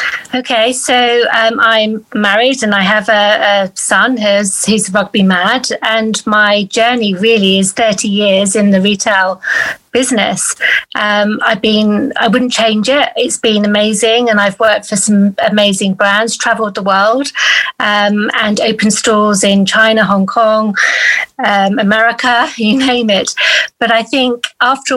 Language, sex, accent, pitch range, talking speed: English, female, British, 205-235 Hz, 150 wpm